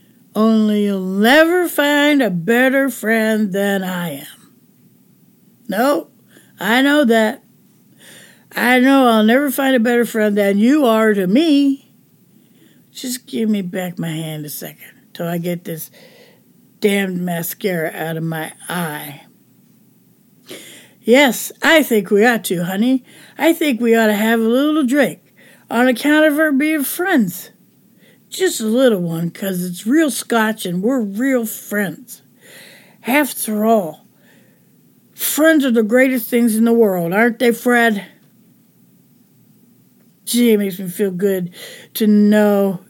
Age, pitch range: 60-79, 200-265 Hz